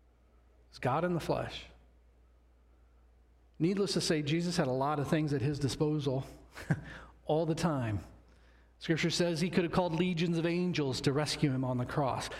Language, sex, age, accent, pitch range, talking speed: English, male, 40-59, American, 135-180 Hz, 170 wpm